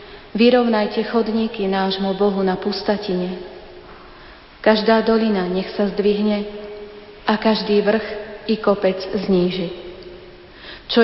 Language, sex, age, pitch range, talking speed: Slovak, female, 30-49, 185-210 Hz, 100 wpm